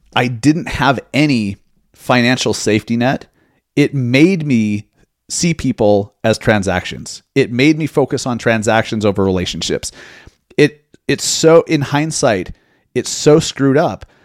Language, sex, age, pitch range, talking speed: English, male, 30-49, 110-140 Hz, 130 wpm